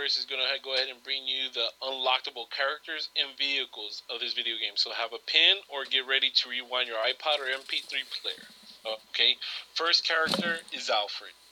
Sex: male